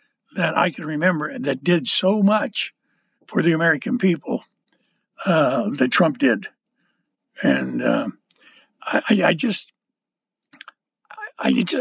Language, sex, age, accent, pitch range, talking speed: English, male, 60-79, American, 175-255 Hz, 105 wpm